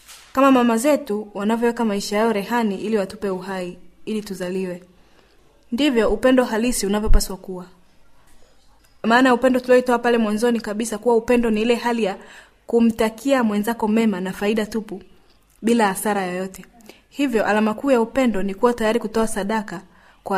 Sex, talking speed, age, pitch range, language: female, 145 wpm, 20-39, 195-240 Hz, Swahili